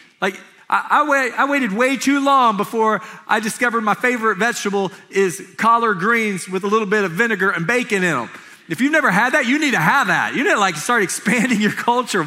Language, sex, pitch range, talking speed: English, male, 180-230 Hz, 215 wpm